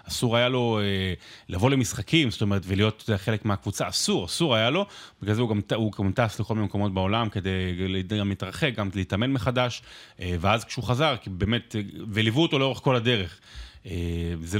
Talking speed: 180 wpm